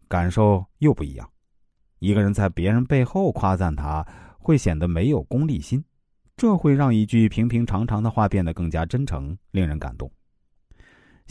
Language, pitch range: Chinese, 90-125 Hz